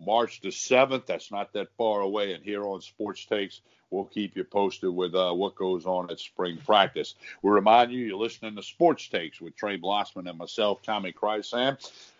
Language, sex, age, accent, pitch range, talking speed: English, male, 60-79, American, 105-130 Hz, 195 wpm